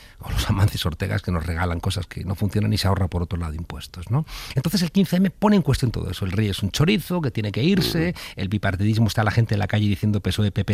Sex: male